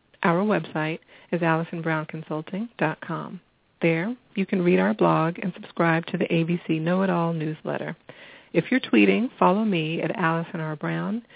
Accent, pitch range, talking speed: American, 165-195 Hz, 135 wpm